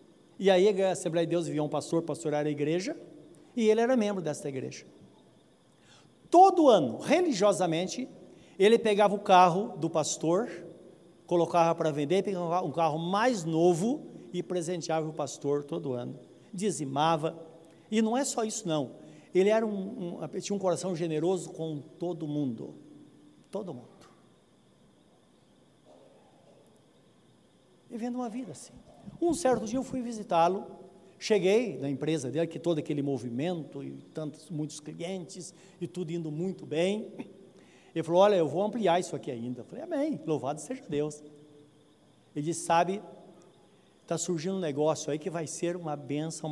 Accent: Brazilian